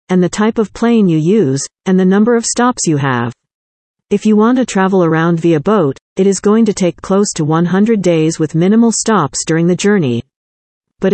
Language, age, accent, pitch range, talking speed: English, 50-69, American, 165-215 Hz, 205 wpm